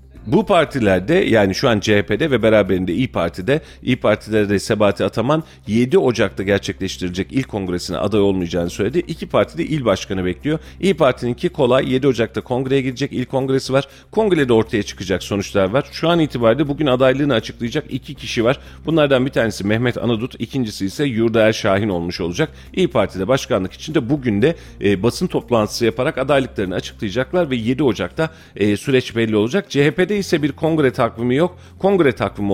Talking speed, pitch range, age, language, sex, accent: 170 wpm, 100-135 Hz, 40-59, Turkish, male, native